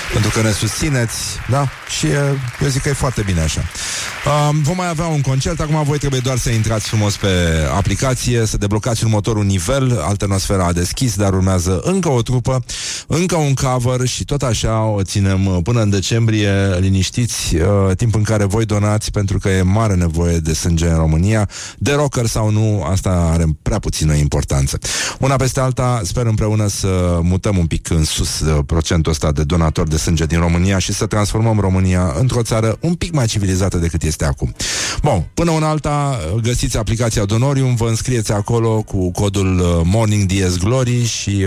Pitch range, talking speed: 90-120 Hz, 180 wpm